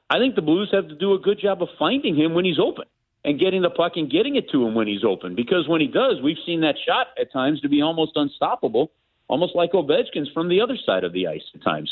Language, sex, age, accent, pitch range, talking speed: English, male, 40-59, American, 115-170 Hz, 270 wpm